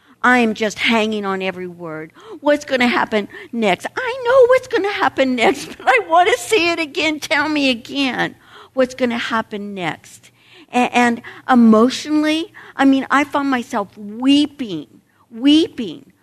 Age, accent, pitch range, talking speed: 60-79, American, 195-255 Hz, 160 wpm